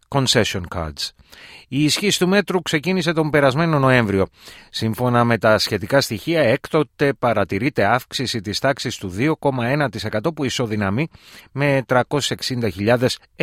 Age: 30-49